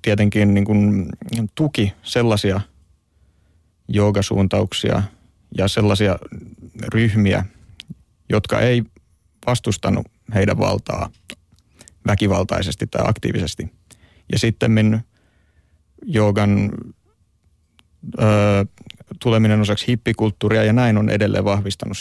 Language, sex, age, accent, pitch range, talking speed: Finnish, male, 30-49, native, 100-115 Hz, 80 wpm